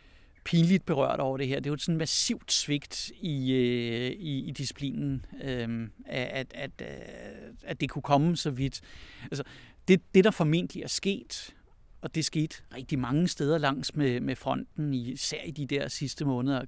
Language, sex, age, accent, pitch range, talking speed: Danish, male, 60-79, native, 125-155 Hz, 175 wpm